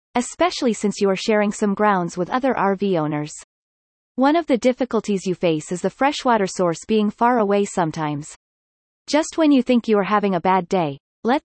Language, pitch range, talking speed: English, 180-250 Hz, 190 wpm